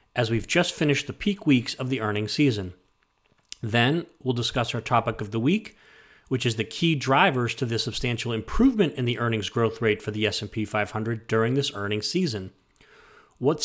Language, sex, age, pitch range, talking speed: English, male, 30-49, 110-140 Hz, 185 wpm